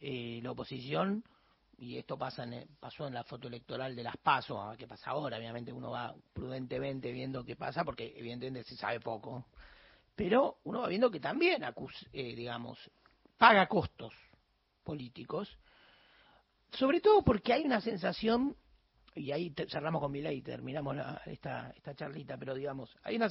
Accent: Argentinian